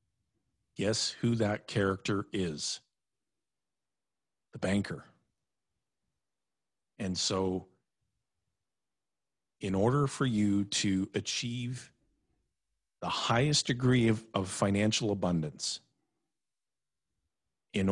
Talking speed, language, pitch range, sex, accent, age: 75 wpm, English, 100-125 Hz, male, American, 50-69